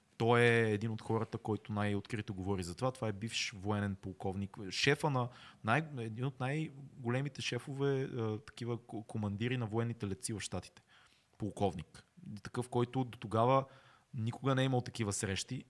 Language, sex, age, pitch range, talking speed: Bulgarian, male, 20-39, 110-135 Hz, 155 wpm